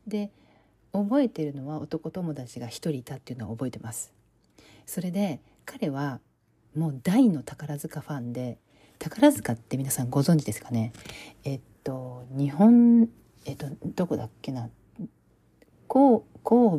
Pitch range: 125-170 Hz